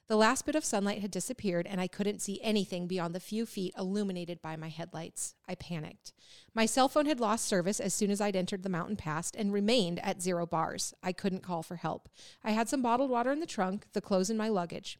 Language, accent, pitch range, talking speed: English, American, 180-225 Hz, 235 wpm